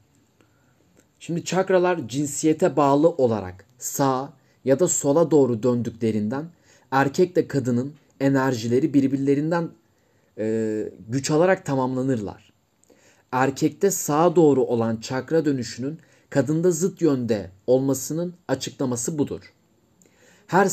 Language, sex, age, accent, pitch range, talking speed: Turkish, male, 30-49, native, 125-160 Hz, 95 wpm